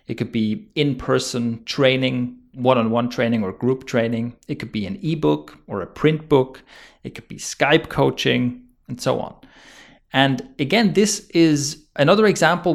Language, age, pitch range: English, 30-49, 125-160 Hz